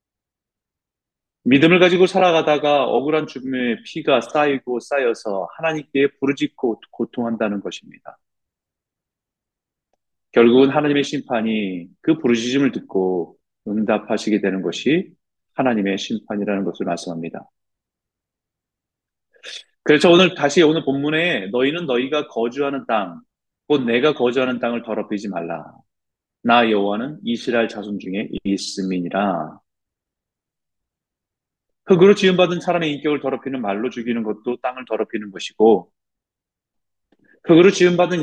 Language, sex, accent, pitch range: Korean, male, native, 105-150 Hz